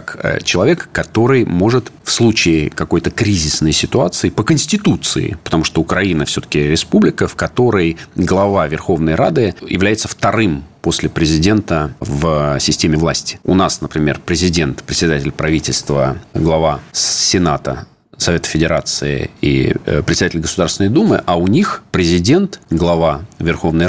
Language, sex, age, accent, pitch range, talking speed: Russian, male, 40-59, native, 80-105 Hz, 120 wpm